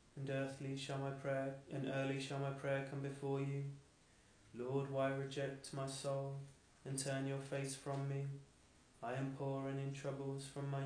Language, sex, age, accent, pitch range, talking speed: English, male, 20-39, British, 135-140 Hz, 170 wpm